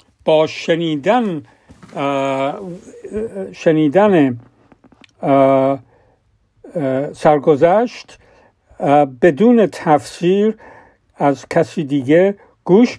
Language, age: Persian, 50-69